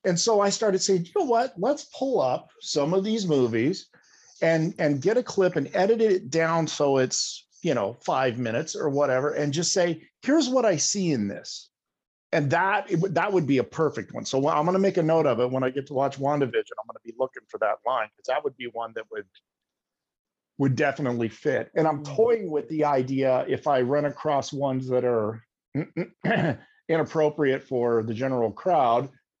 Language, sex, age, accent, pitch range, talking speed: English, male, 50-69, American, 120-175 Hz, 210 wpm